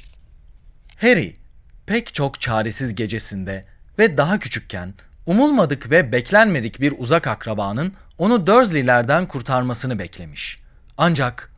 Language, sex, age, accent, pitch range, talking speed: Turkish, male, 40-59, native, 110-180 Hz, 100 wpm